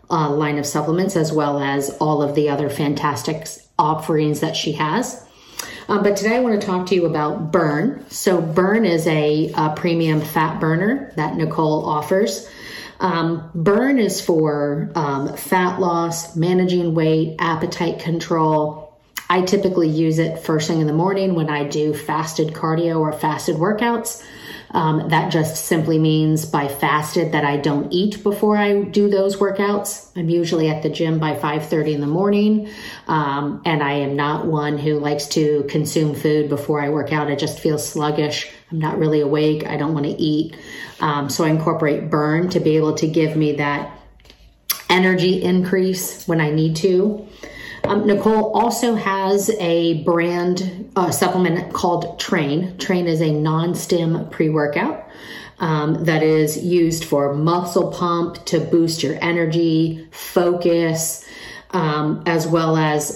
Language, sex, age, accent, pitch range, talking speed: English, female, 40-59, American, 155-180 Hz, 160 wpm